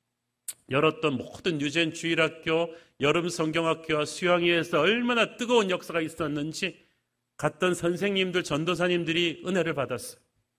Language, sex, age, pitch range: Korean, male, 40-59, 150-175 Hz